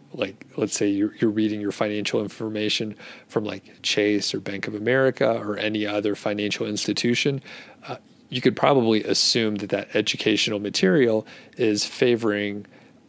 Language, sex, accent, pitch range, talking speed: English, male, American, 105-115 Hz, 145 wpm